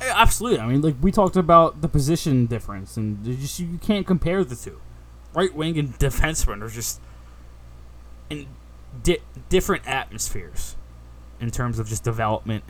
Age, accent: 20-39, American